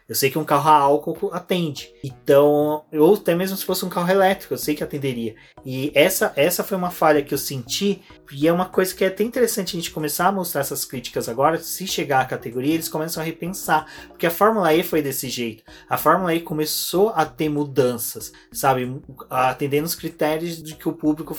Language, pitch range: Portuguese, 140-170 Hz